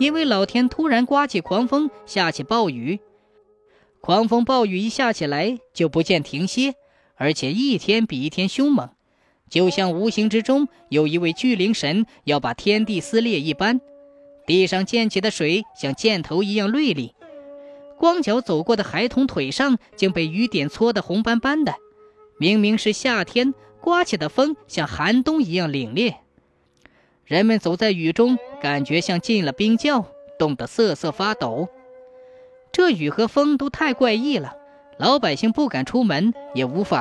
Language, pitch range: Chinese, 180-275 Hz